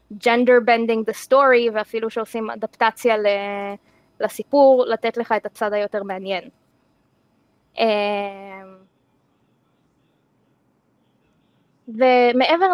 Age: 20-39